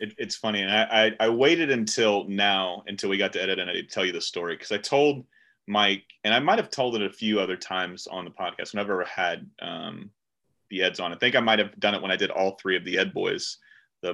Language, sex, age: English, male, 30-49